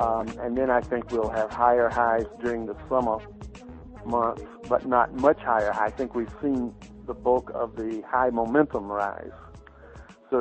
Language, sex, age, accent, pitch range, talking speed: English, male, 50-69, American, 110-125 Hz, 165 wpm